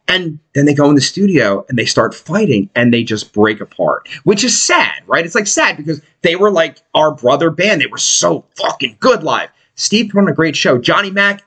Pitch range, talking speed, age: 140-200 Hz, 225 wpm, 30-49